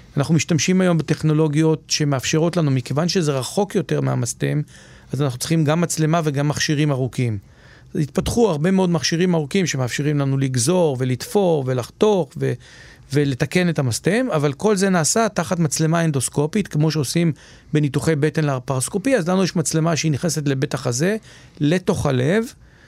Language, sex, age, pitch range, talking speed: Hebrew, male, 40-59, 140-170 Hz, 145 wpm